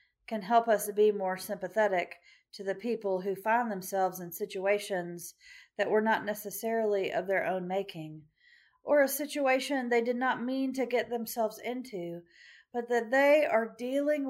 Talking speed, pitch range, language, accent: 160 wpm, 185-240 Hz, English, American